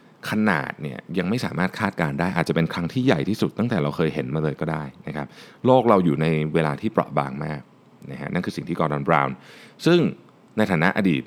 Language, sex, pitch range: Thai, male, 75-110 Hz